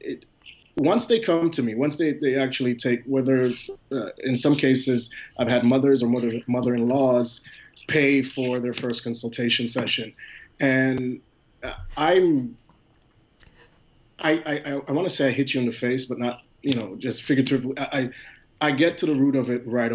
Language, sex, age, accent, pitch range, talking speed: English, male, 30-49, American, 120-140 Hz, 175 wpm